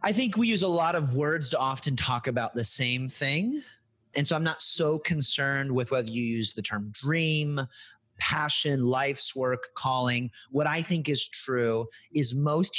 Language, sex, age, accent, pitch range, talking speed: English, male, 30-49, American, 110-150 Hz, 185 wpm